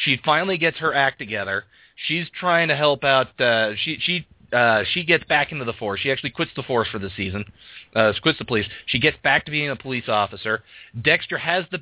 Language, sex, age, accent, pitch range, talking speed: English, male, 30-49, American, 115-155 Hz, 225 wpm